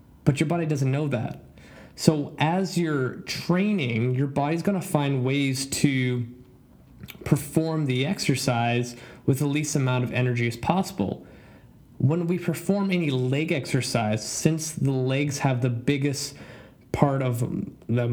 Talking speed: 140 wpm